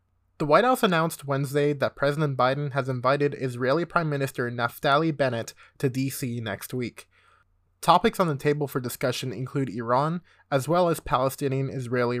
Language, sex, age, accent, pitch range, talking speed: English, male, 20-39, American, 120-155 Hz, 150 wpm